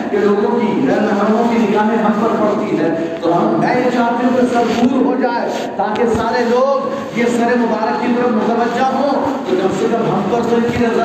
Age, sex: 40-59, male